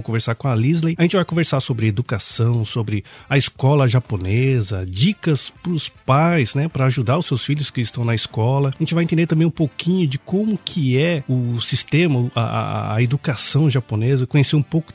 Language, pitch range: Portuguese, 115-150 Hz